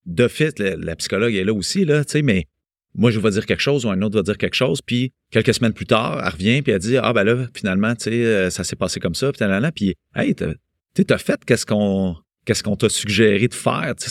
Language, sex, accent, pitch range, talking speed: French, male, Canadian, 95-120 Hz, 270 wpm